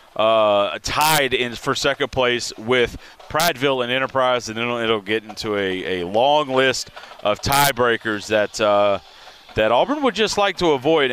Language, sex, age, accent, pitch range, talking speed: English, male, 30-49, American, 115-140 Hz, 175 wpm